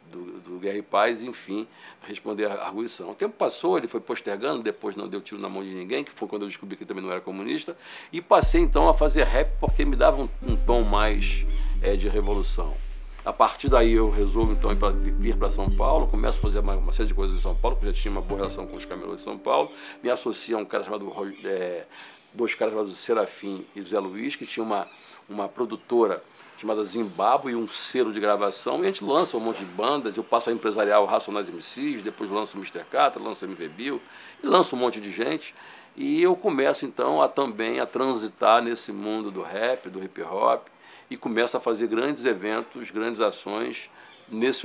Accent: Brazilian